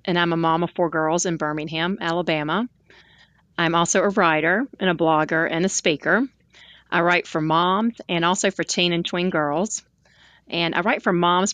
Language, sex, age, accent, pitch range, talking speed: English, female, 30-49, American, 160-190 Hz, 185 wpm